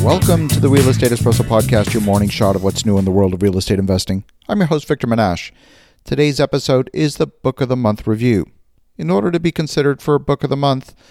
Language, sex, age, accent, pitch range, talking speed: English, male, 40-59, American, 110-140 Hz, 245 wpm